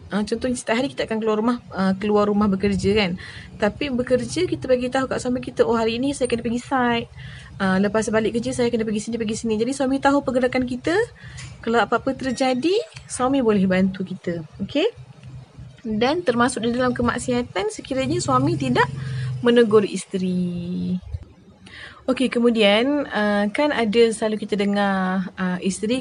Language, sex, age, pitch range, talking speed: Malay, female, 20-39, 205-255 Hz, 165 wpm